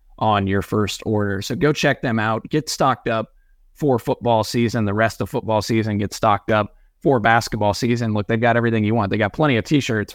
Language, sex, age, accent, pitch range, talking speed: English, male, 30-49, American, 105-115 Hz, 220 wpm